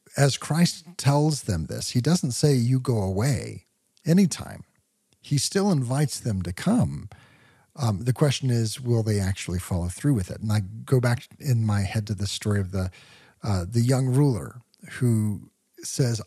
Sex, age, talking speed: male, 40-59, 175 wpm